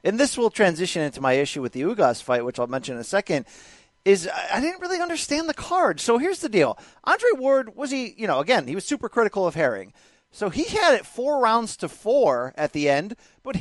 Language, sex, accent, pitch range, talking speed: English, male, American, 180-270 Hz, 235 wpm